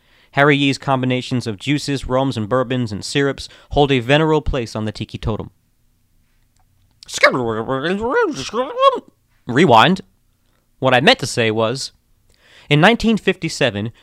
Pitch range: 115-145 Hz